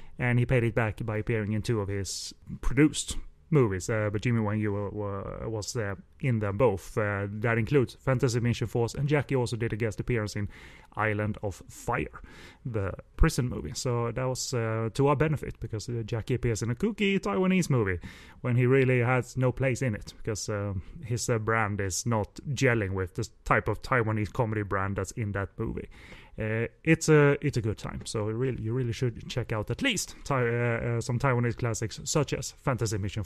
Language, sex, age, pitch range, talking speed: English, male, 30-49, 110-140 Hz, 200 wpm